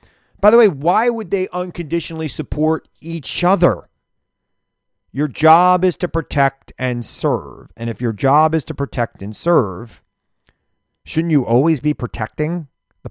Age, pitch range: 40-59, 105-155 Hz